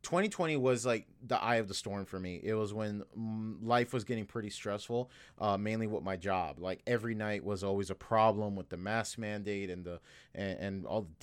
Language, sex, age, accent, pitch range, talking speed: English, male, 30-49, American, 100-115 Hz, 215 wpm